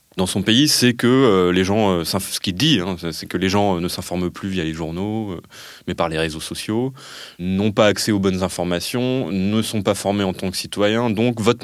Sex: male